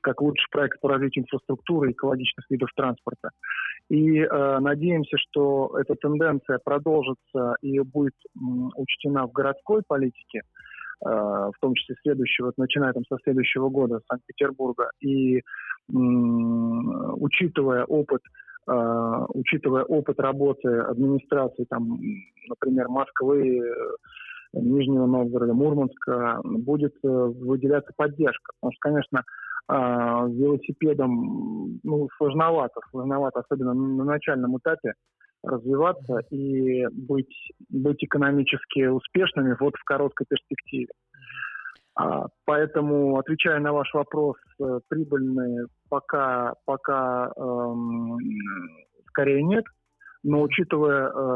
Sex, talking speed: male, 105 wpm